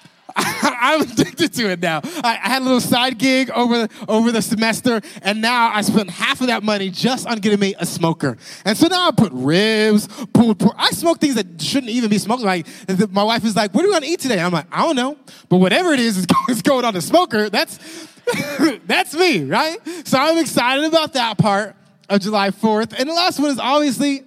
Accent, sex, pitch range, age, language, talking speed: American, male, 190-260 Hz, 20-39, English, 215 wpm